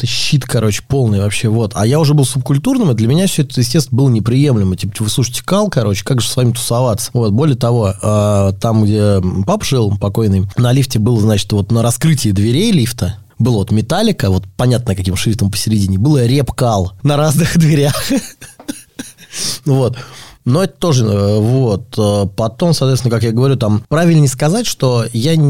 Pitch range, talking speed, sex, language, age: 105-140 Hz, 175 wpm, male, Russian, 20-39